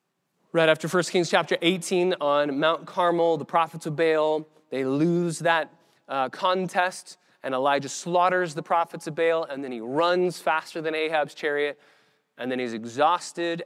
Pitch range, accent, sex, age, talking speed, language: 135-170 Hz, American, male, 20-39, 165 wpm, English